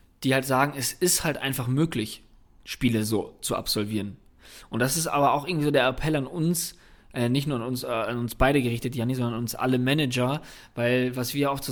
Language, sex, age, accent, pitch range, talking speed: German, male, 20-39, German, 125-140 Hz, 225 wpm